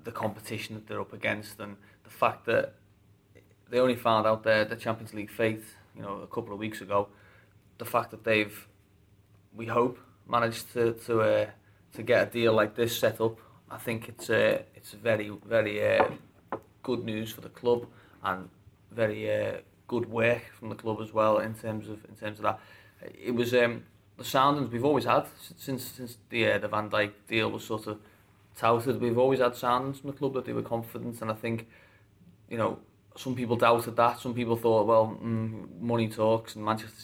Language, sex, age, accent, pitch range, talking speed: English, male, 20-39, British, 105-115 Hz, 200 wpm